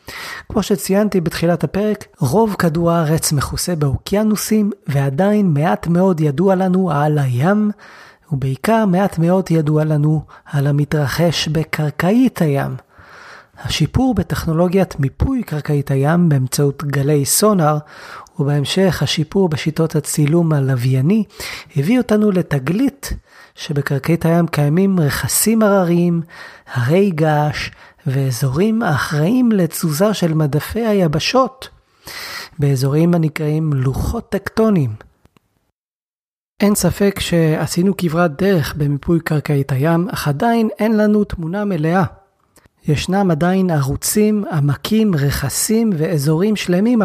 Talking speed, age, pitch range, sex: 100 wpm, 30-49, 150-195 Hz, male